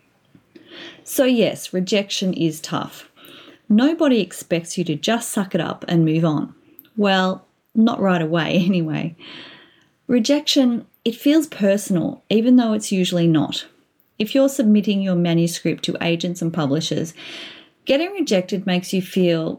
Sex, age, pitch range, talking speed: female, 30-49, 170-230 Hz, 135 wpm